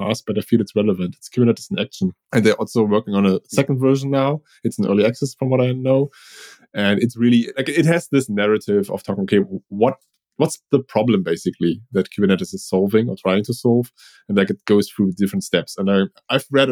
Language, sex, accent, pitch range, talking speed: English, male, German, 100-130 Hz, 225 wpm